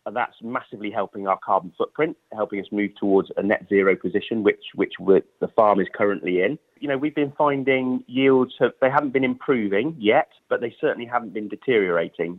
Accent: British